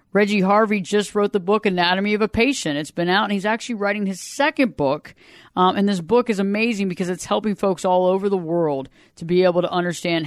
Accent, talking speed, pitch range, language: American, 230 wpm, 165-210 Hz, English